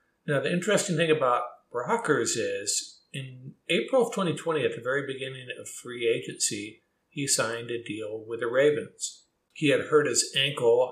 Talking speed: 165 wpm